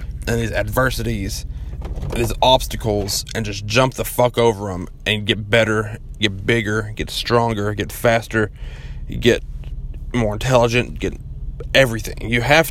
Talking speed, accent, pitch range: 135 wpm, American, 100-130 Hz